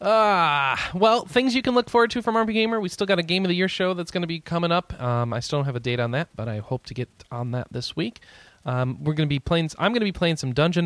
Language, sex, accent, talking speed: English, male, American, 315 wpm